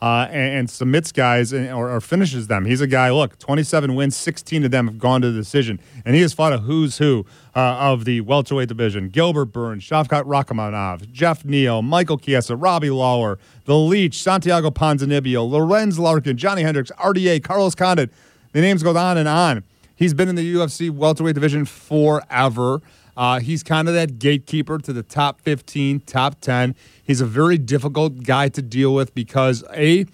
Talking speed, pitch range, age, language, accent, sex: 180 wpm, 125-155 Hz, 40-59, English, American, male